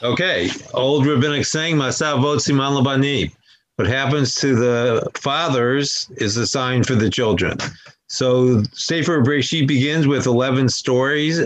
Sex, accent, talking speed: male, American, 125 wpm